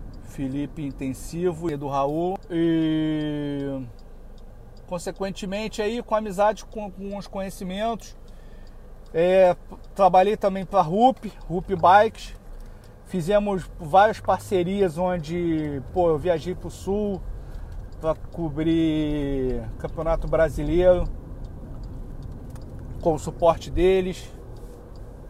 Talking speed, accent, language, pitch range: 95 wpm, Brazilian, Portuguese, 140-180 Hz